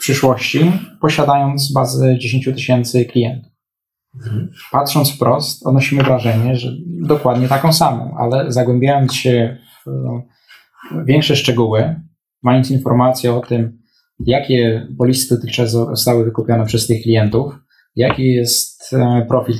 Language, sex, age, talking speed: Polish, male, 20-39, 105 wpm